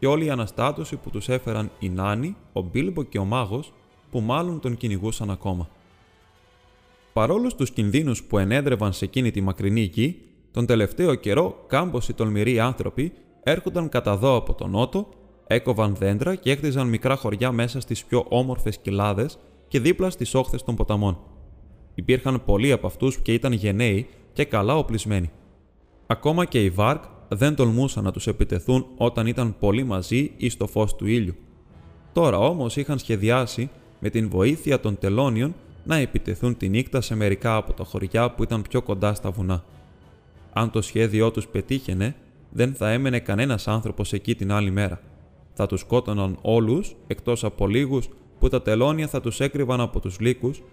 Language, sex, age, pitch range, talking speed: Greek, male, 20-39, 100-130 Hz, 165 wpm